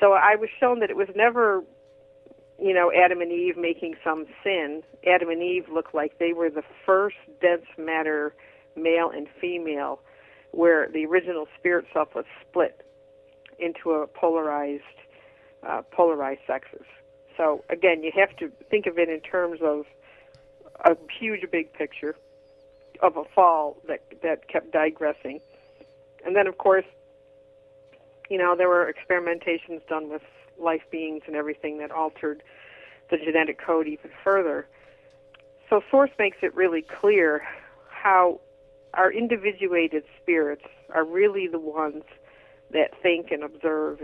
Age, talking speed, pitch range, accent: 50-69, 145 wpm, 150-185 Hz, American